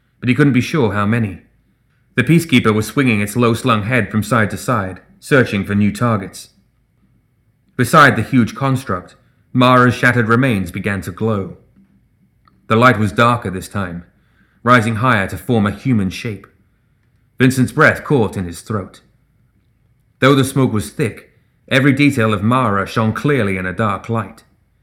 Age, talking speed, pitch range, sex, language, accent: 30-49, 160 wpm, 100-130 Hz, male, English, British